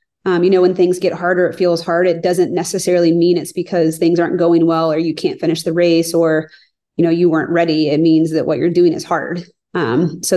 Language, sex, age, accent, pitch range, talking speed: English, female, 30-49, American, 165-180 Hz, 245 wpm